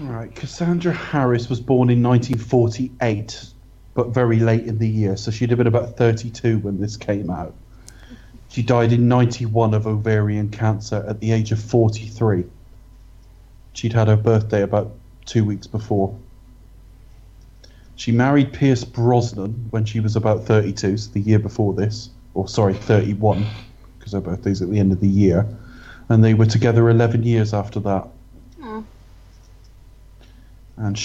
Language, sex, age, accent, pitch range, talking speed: English, male, 30-49, British, 100-115 Hz, 155 wpm